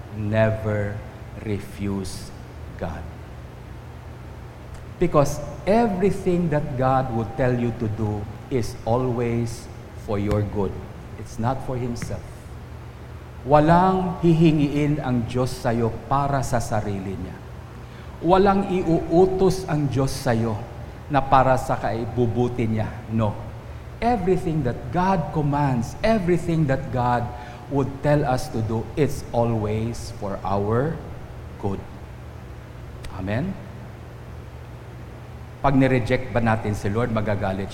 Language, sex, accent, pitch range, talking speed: English, male, Filipino, 110-145 Hz, 105 wpm